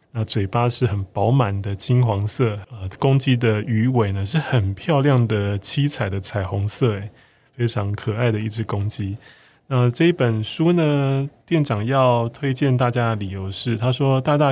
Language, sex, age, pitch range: Chinese, male, 20-39, 110-130 Hz